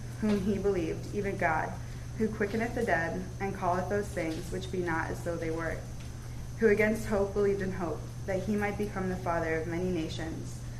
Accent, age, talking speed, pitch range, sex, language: American, 20-39, 195 wpm, 120-195 Hz, female, English